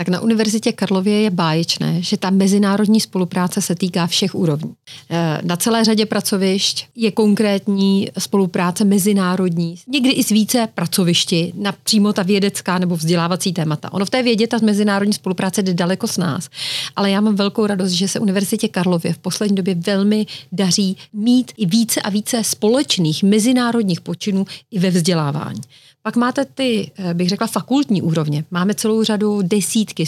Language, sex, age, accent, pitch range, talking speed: Czech, female, 40-59, native, 175-215 Hz, 160 wpm